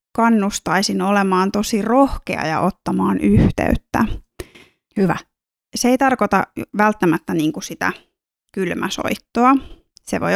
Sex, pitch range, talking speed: female, 180-230 Hz, 95 wpm